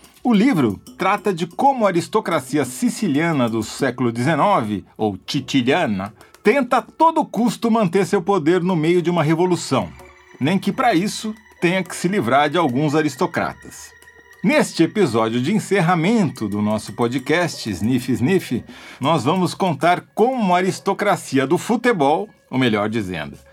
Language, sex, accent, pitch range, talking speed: Portuguese, male, Brazilian, 130-195 Hz, 145 wpm